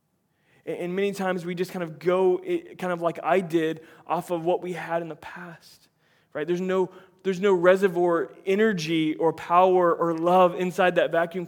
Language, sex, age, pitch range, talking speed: English, male, 20-39, 150-175 Hz, 185 wpm